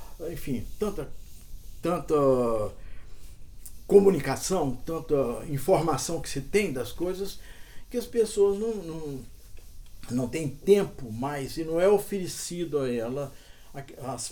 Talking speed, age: 110 wpm, 60-79